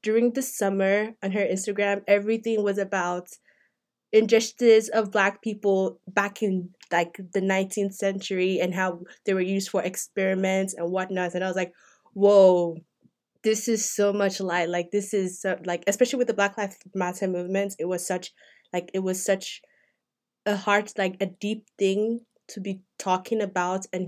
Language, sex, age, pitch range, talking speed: English, female, 20-39, 185-215 Hz, 170 wpm